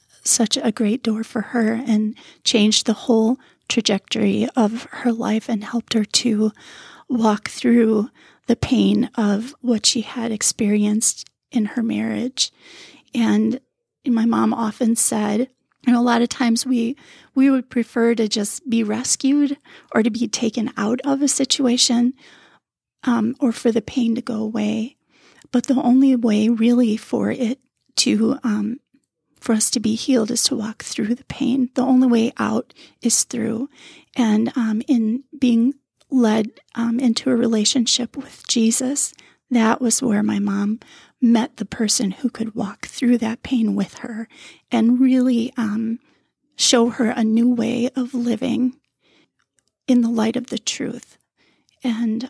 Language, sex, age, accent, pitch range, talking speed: English, female, 30-49, American, 225-255 Hz, 155 wpm